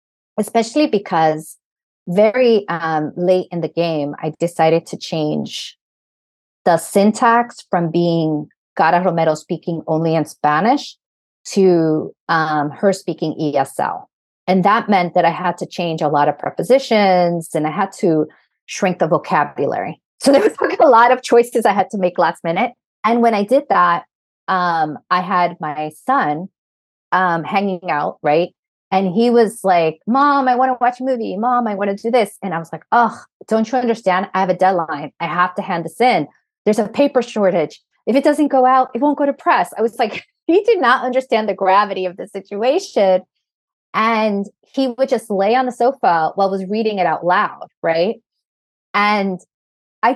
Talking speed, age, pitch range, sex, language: 180 wpm, 30-49, 170-235 Hz, female, English